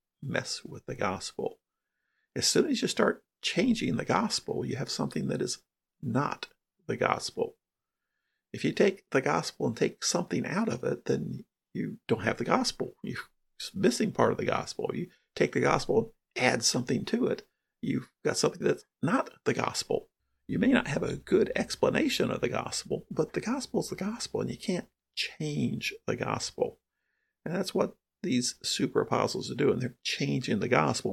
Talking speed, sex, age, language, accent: 180 wpm, male, 50-69, English, American